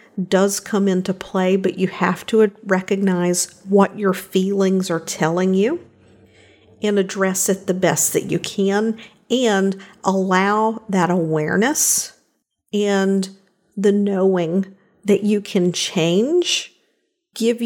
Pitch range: 185-220 Hz